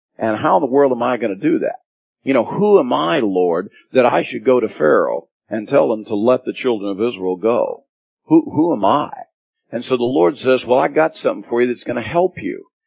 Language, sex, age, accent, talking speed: English, male, 50-69, American, 245 wpm